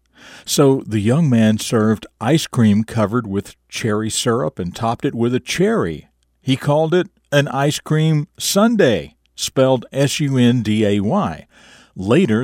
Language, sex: English, male